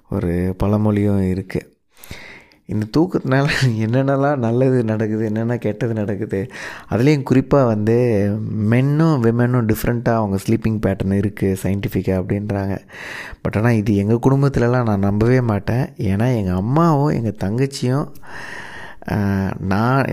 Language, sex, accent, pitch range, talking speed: Tamil, male, native, 105-135 Hz, 110 wpm